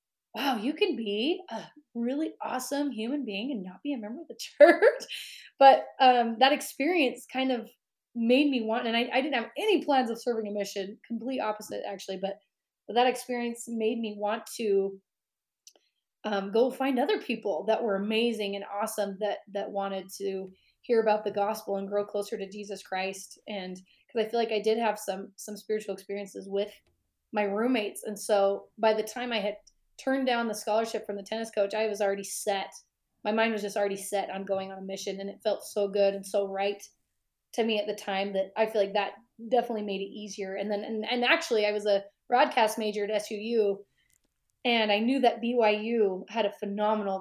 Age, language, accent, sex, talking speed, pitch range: 30-49, English, American, female, 200 wpm, 200-240 Hz